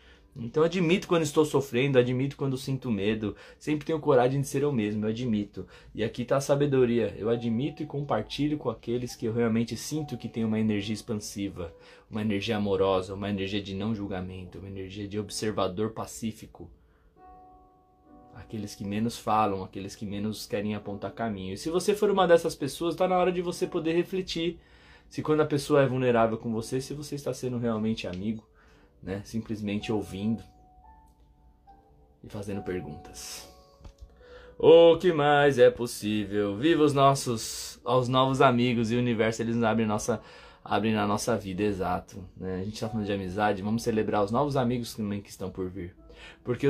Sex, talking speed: male, 175 wpm